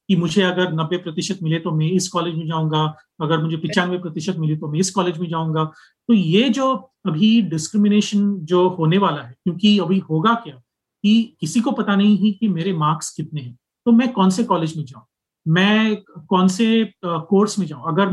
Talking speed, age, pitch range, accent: 200 wpm, 30-49, 160-200 Hz, native